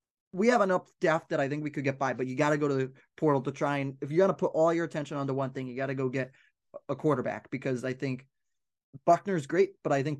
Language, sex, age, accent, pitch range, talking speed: English, male, 20-39, American, 135-160 Hz, 280 wpm